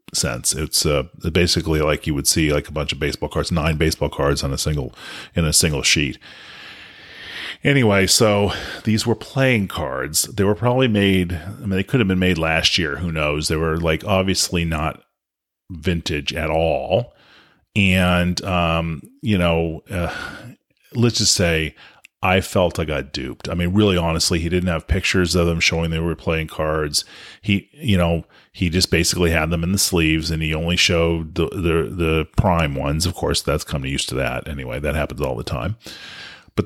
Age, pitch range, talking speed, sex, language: 40-59, 80-95 Hz, 190 wpm, male, English